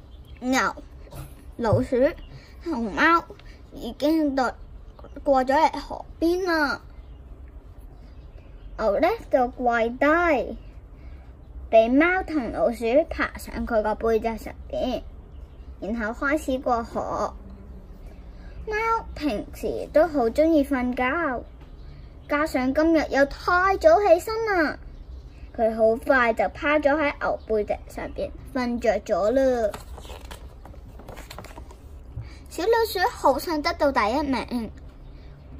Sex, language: male, Chinese